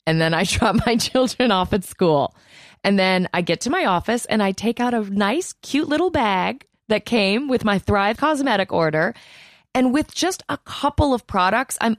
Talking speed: 200 wpm